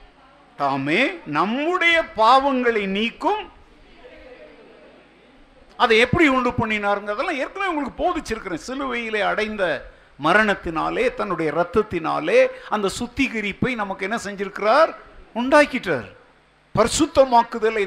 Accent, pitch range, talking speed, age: native, 210-270 Hz, 65 wpm, 50-69